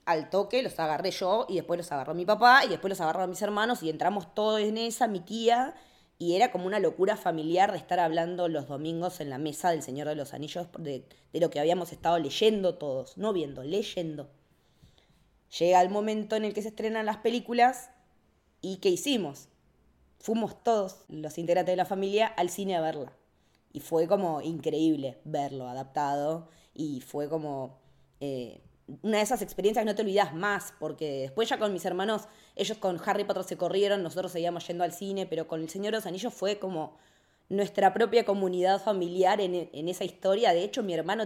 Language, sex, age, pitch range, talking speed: Spanish, female, 20-39, 160-210 Hz, 195 wpm